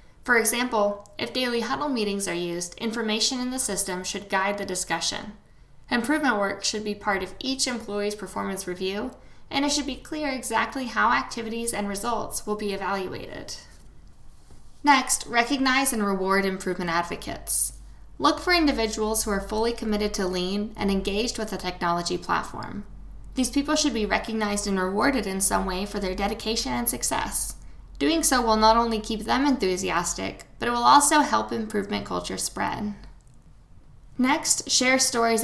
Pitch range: 195-245 Hz